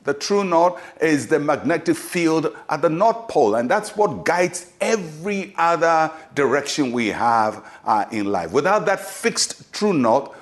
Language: English